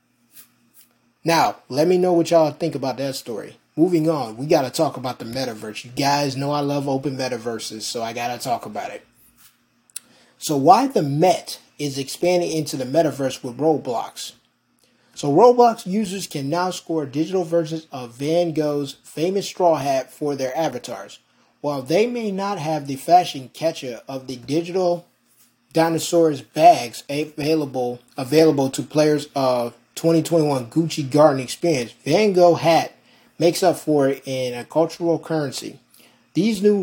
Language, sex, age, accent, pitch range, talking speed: English, male, 20-39, American, 130-165 Hz, 155 wpm